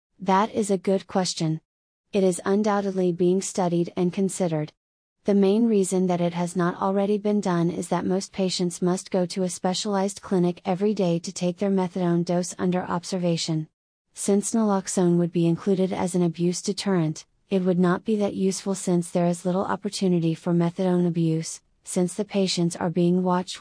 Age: 30-49